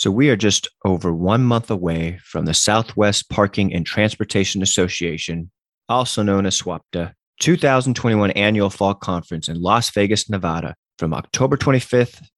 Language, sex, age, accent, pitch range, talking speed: English, male, 30-49, American, 95-125 Hz, 145 wpm